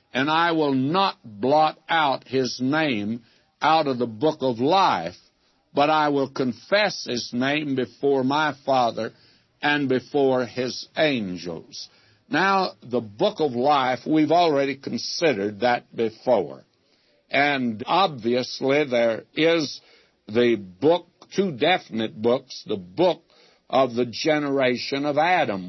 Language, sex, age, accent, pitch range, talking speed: English, male, 60-79, American, 120-155 Hz, 125 wpm